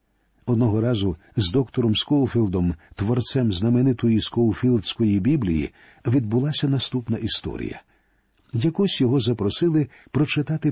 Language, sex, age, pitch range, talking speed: Ukrainian, male, 50-69, 110-140 Hz, 90 wpm